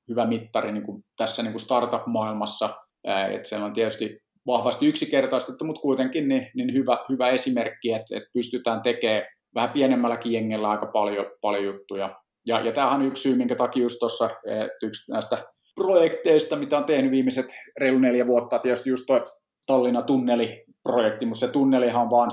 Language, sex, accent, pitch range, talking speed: Finnish, male, native, 105-125 Hz, 165 wpm